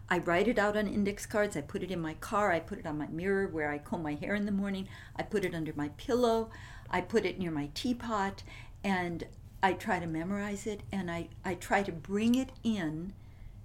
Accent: American